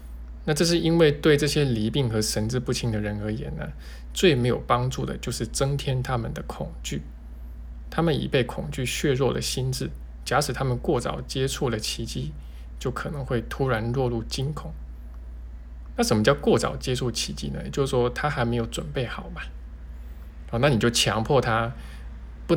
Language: Chinese